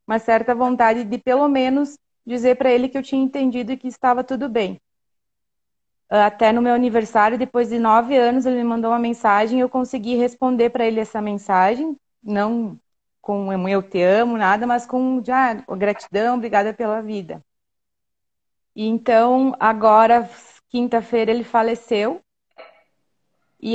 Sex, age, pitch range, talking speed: female, 30-49, 205-245 Hz, 145 wpm